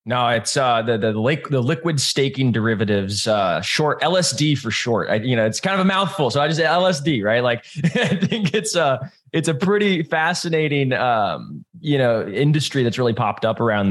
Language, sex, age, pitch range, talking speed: English, male, 20-39, 115-180 Hz, 200 wpm